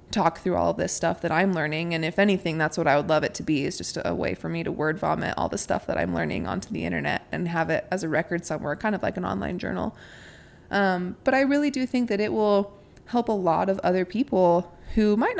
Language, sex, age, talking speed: English, female, 20-39, 265 wpm